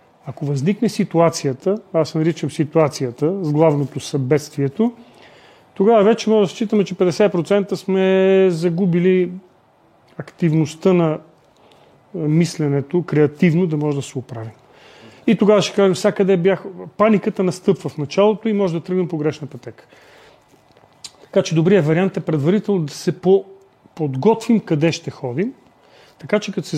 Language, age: Bulgarian, 40-59